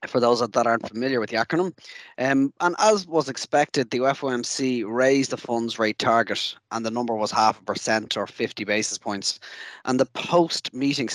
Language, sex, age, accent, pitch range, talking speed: English, male, 20-39, Irish, 110-135 Hz, 190 wpm